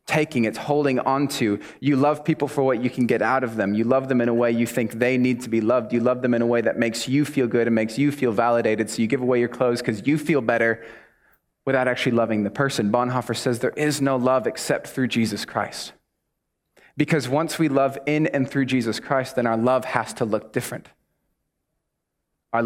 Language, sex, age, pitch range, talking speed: English, male, 30-49, 115-135 Hz, 230 wpm